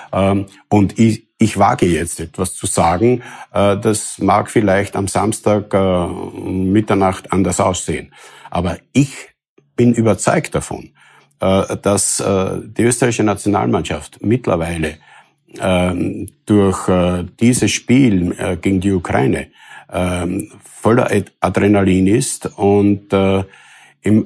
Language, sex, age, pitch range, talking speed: German, male, 50-69, 95-105 Hz, 90 wpm